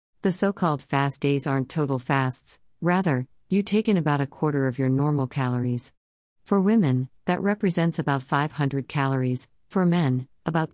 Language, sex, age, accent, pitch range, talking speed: English, female, 50-69, American, 130-170 Hz, 155 wpm